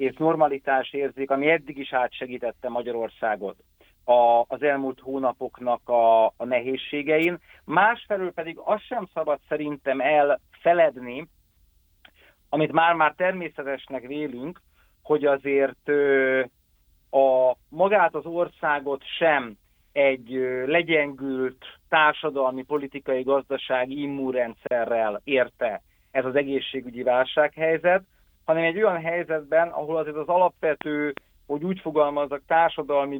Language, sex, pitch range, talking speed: Hungarian, male, 130-155 Hz, 100 wpm